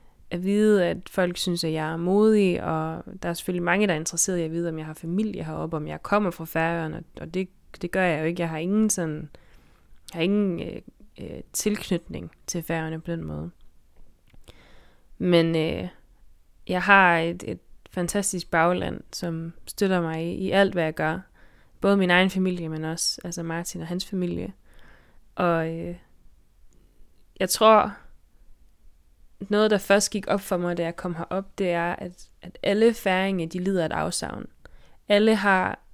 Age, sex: 20-39, female